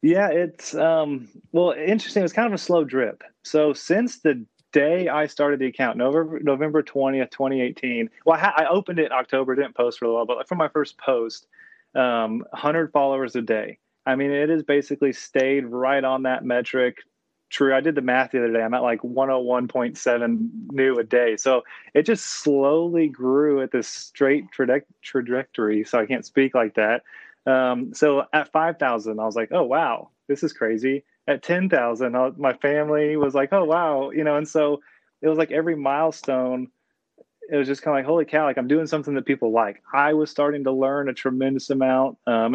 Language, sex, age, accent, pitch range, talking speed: English, male, 30-49, American, 130-155 Hz, 200 wpm